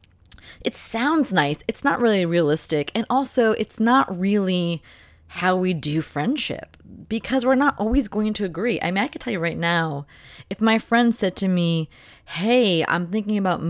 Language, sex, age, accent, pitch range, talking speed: English, female, 20-39, American, 160-210 Hz, 180 wpm